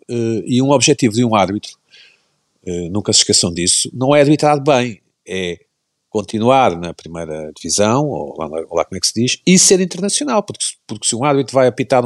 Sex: male